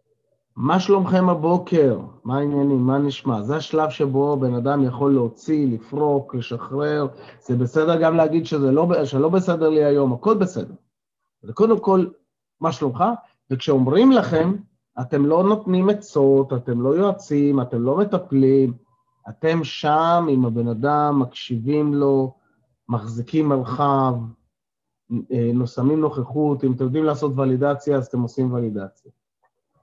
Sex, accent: male, native